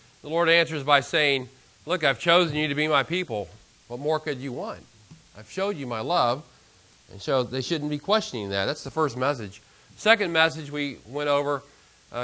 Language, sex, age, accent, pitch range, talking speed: English, male, 40-59, American, 130-170 Hz, 195 wpm